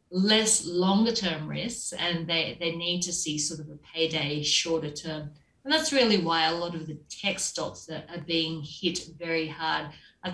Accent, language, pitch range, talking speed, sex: Australian, English, 165-200 Hz, 190 wpm, female